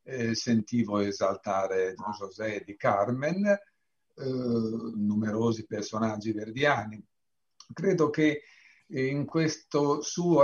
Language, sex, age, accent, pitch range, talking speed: Italian, male, 50-69, native, 110-145 Hz, 85 wpm